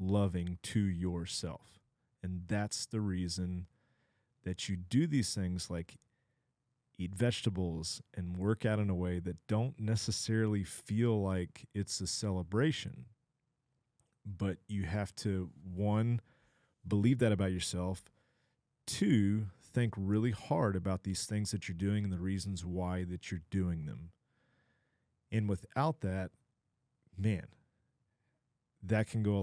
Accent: American